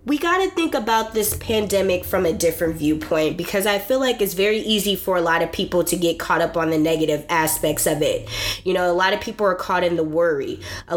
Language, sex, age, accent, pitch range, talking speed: English, female, 20-39, American, 170-260 Hz, 240 wpm